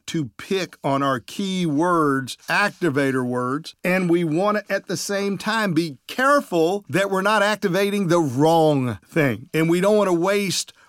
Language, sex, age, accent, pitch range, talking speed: English, male, 50-69, American, 145-185 Hz, 170 wpm